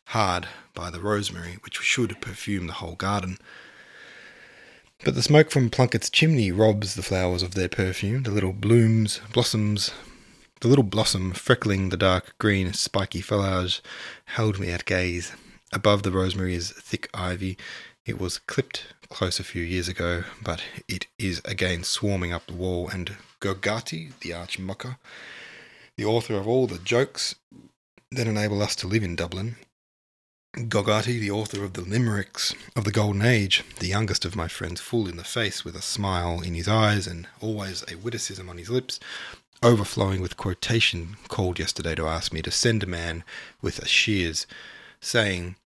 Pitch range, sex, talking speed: 90-110 Hz, male, 165 wpm